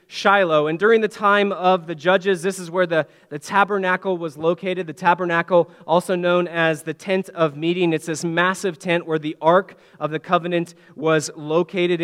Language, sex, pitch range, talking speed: English, male, 170-205 Hz, 185 wpm